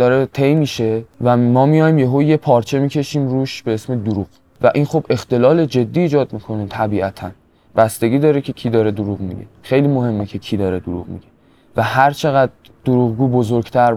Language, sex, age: Persian, male, 20-39